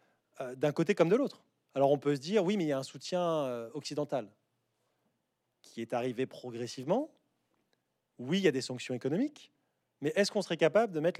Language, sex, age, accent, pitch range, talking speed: French, male, 30-49, French, 135-180 Hz, 195 wpm